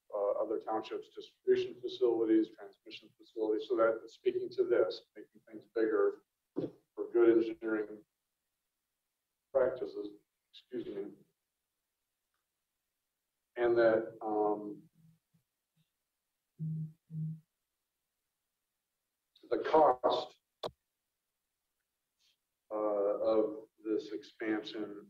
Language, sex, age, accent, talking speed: English, male, 50-69, American, 70 wpm